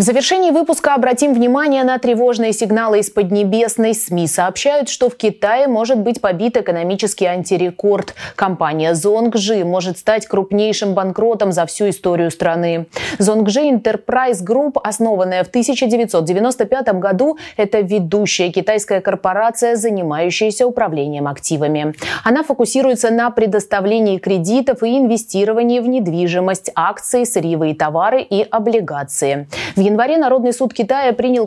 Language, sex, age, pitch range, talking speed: Russian, female, 30-49, 180-240 Hz, 125 wpm